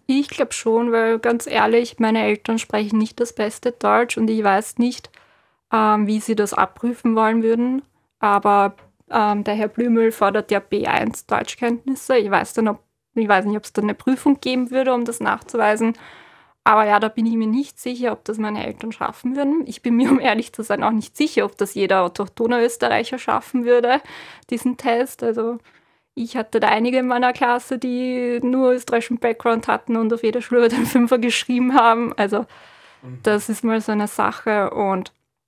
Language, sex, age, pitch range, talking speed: German, female, 20-39, 215-240 Hz, 185 wpm